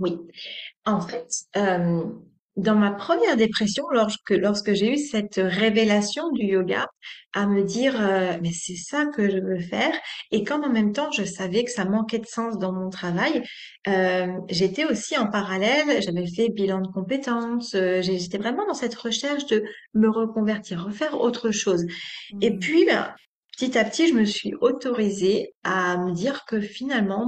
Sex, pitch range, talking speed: female, 185-230 Hz, 175 wpm